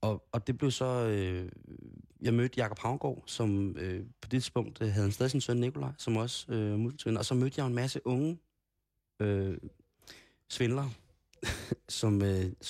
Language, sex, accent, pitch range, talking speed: Danish, male, native, 100-115 Hz, 175 wpm